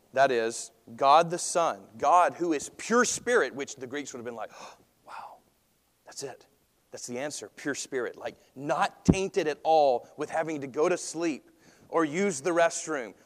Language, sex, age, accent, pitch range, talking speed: English, male, 40-59, American, 130-180 Hz, 180 wpm